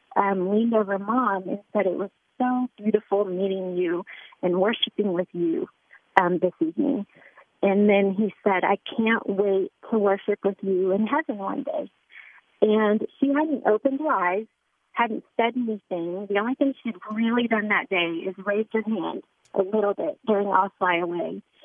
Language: English